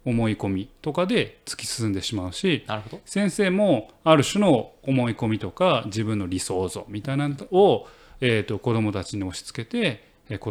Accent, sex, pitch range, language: native, male, 110-165 Hz, Japanese